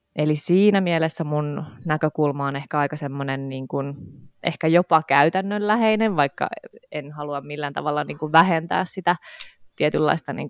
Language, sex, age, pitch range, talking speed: Finnish, female, 20-39, 145-175 Hz, 145 wpm